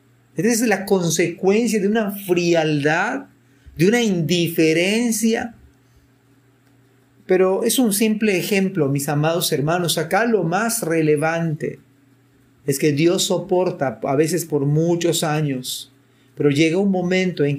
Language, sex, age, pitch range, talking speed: Spanish, male, 40-59, 135-190 Hz, 125 wpm